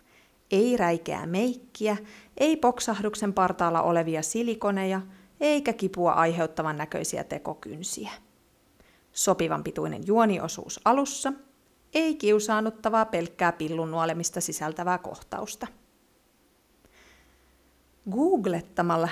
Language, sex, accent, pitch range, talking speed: Finnish, female, native, 170-240 Hz, 75 wpm